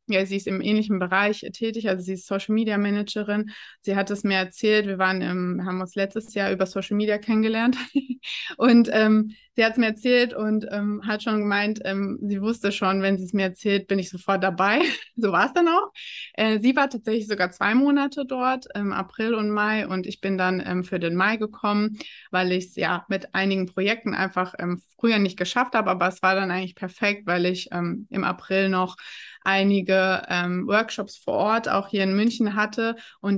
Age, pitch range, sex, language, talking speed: 20-39, 190-220 Hz, female, German, 200 wpm